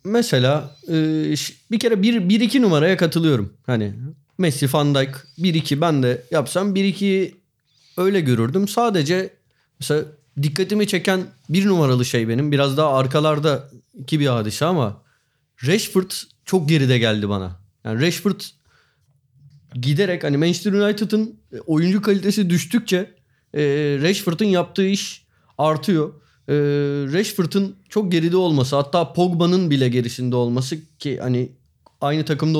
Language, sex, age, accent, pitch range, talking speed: Turkish, male, 30-49, native, 135-185 Hz, 115 wpm